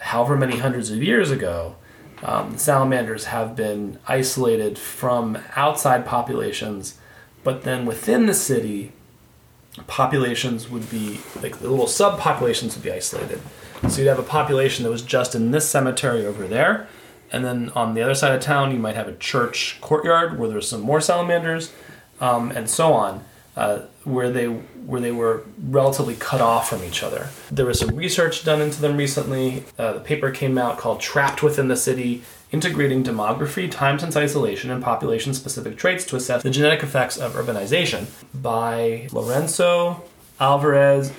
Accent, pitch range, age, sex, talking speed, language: American, 120-145 Hz, 30-49, male, 165 wpm, English